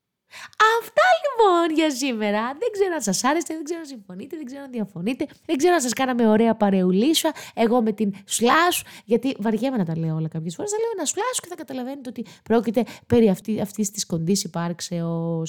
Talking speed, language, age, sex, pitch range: 195 wpm, Greek, 20-39, female, 200-295 Hz